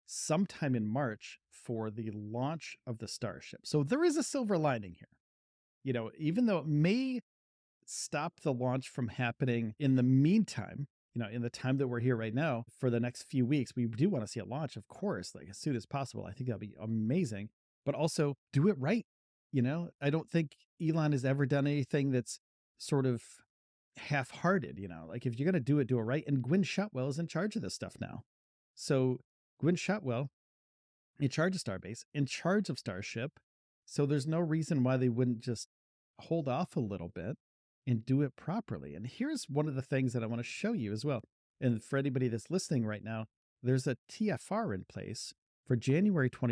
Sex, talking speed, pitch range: male, 205 wpm, 115-160 Hz